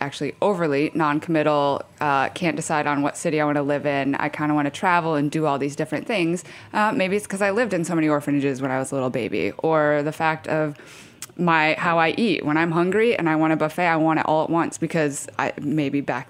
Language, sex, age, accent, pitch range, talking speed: English, female, 20-39, American, 150-175 Hz, 250 wpm